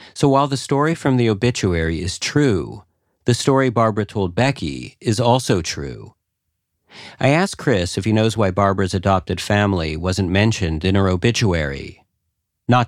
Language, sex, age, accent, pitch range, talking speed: English, male, 40-59, American, 90-115 Hz, 155 wpm